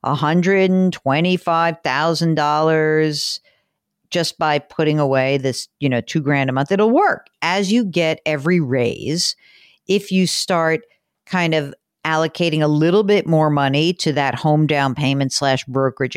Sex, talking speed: female, 155 wpm